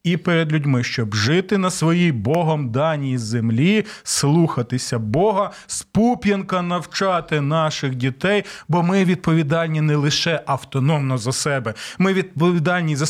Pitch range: 140-180 Hz